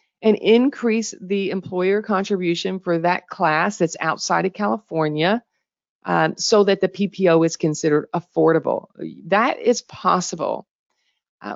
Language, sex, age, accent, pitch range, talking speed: English, female, 40-59, American, 160-210 Hz, 125 wpm